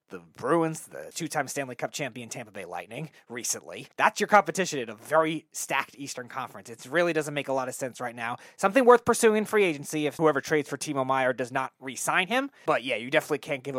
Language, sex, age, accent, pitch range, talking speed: English, male, 20-39, American, 125-165 Hz, 225 wpm